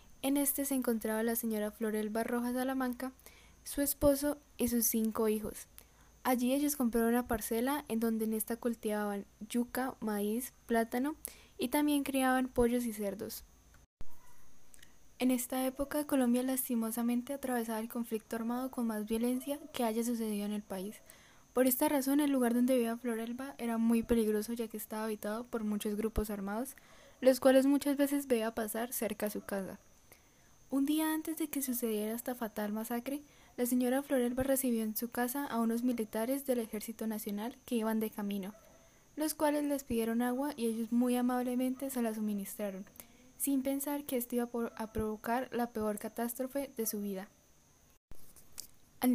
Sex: female